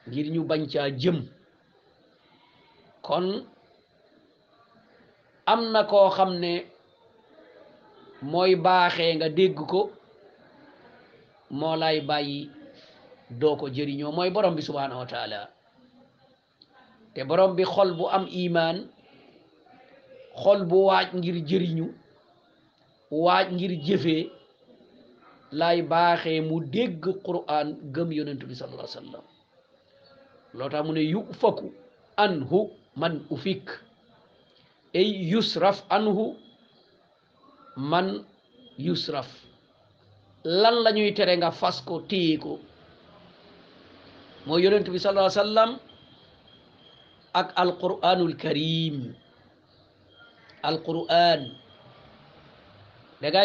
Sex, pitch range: male, 155-195 Hz